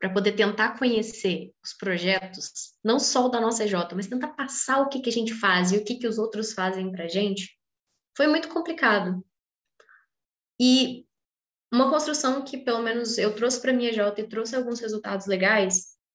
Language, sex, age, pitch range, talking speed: Portuguese, female, 10-29, 205-255 Hz, 190 wpm